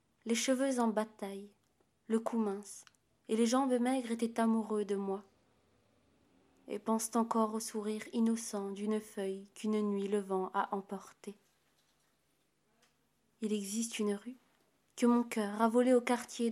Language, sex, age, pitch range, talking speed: French, female, 20-39, 205-230 Hz, 145 wpm